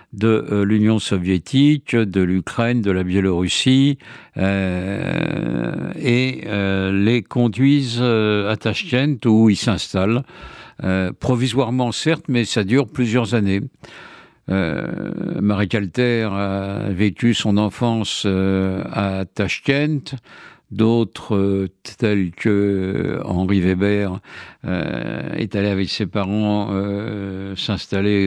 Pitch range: 105-140 Hz